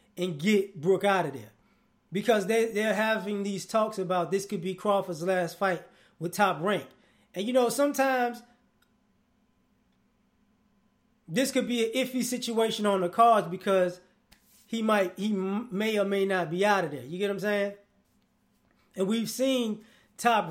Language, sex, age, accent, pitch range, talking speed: English, male, 20-39, American, 190-220 Hz, 165 wpm